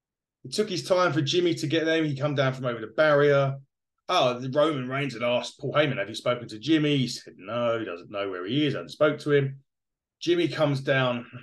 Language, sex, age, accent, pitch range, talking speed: English, male, 30-49, British, 125-155 Hz, 235 wpm